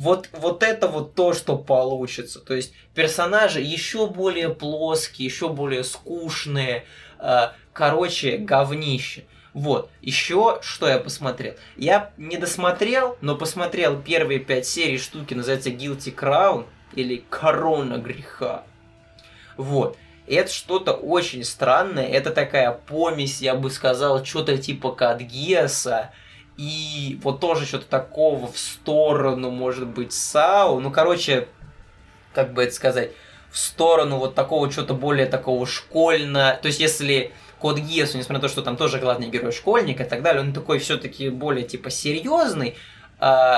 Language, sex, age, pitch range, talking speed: Russian, male, 20-39, 130-160 Hz, 140 wpm